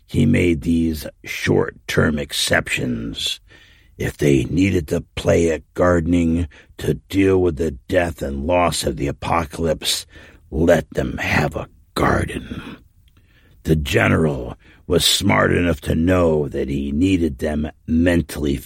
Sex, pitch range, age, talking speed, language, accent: male, 75-85 Hz, 60-79, 125 wpm, English, American